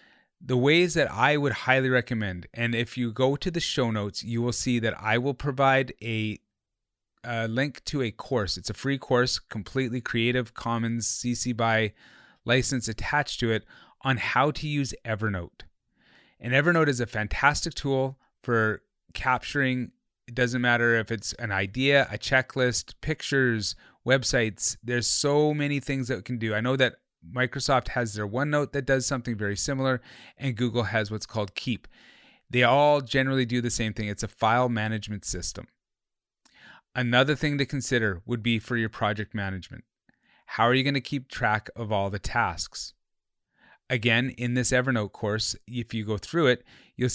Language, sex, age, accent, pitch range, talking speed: English, male, 30-49, American, 110-130 Hz, 170 wpm